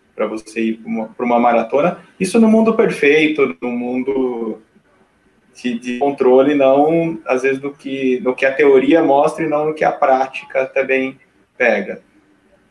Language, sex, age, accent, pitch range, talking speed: Portuguese, male, 20-39, Brazilian, 125-160 Hz, 160 wpm